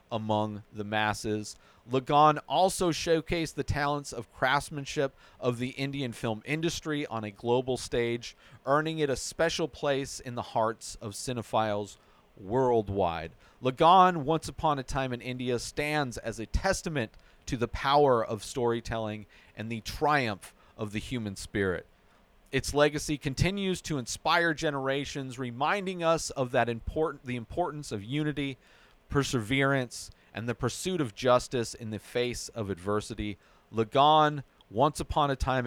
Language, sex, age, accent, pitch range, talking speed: English, male, 40-59, American, 105-145 Hz, 140 wpm